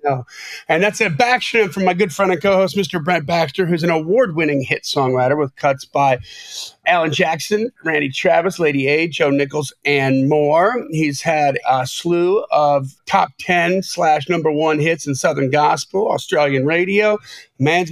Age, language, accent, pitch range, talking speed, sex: 40-59, English, American, 145-195 Hz, 160 wpm, male